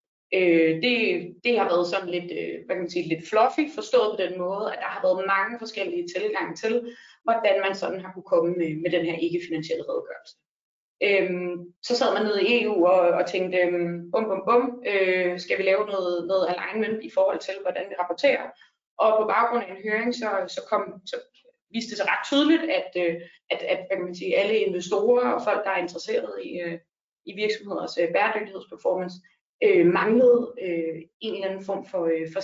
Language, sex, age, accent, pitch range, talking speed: Danish, female, 20-39, native, 180-250 Hz, 200 wpm